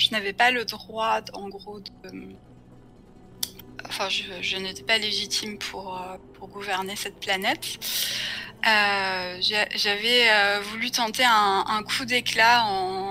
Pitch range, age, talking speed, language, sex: 190-235 Hz, 20-39, 130 wpm, French, female